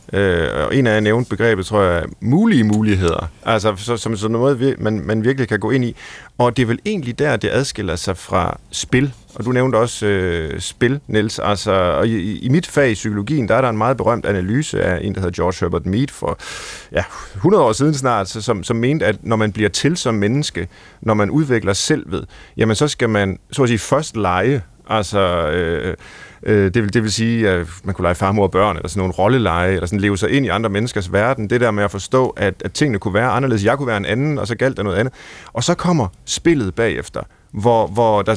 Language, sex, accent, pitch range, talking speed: Danish, male, native, 100-130 Hz, 235 wpm